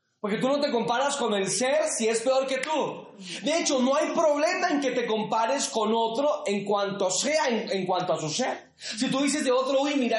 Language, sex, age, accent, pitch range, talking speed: Spanish, male, 30-49, Mexican, 200-285 Hz, 235 wpm